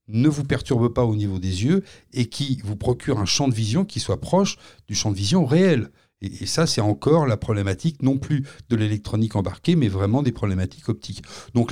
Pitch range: 105-140 Hz